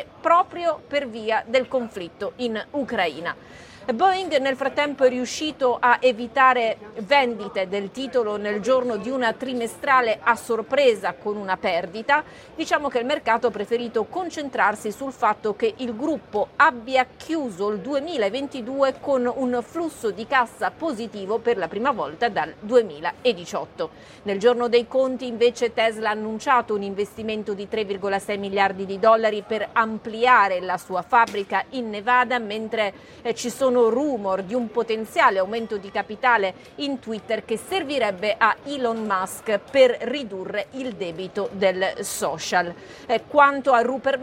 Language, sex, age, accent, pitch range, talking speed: Italian, female, 40-59, native, 210-265 Hz, 140 wpm